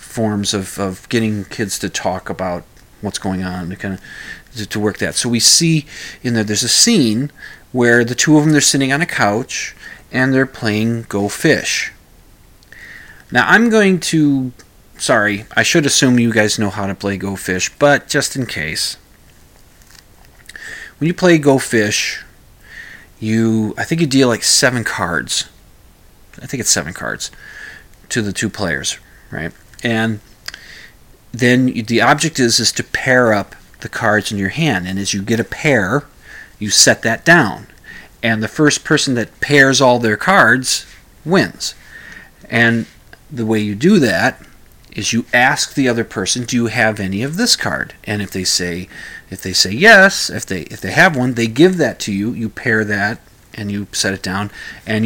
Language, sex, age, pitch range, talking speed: English, male, 30-49, 105-135 Hz, 180 wpm